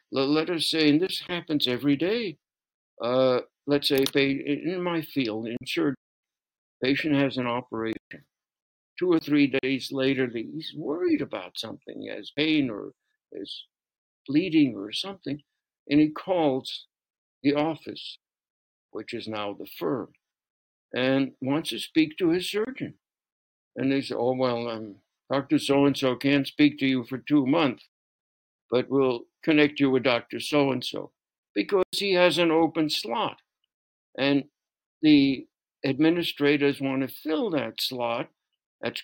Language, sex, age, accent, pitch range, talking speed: English, male, 60-79, American, 130-175 Hz, 140 wpm